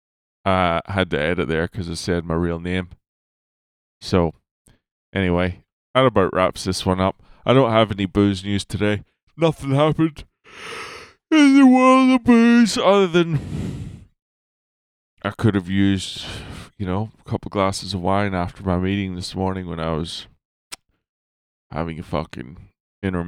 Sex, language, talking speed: male, English, 150 wpm